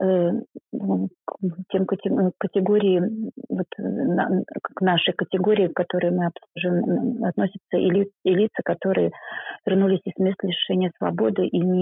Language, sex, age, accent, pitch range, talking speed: Russian, female, 30-49, native, 175-205 Hz, 105 wpm